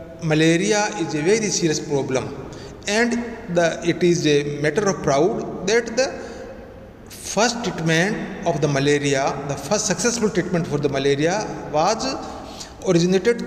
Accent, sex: Indian, male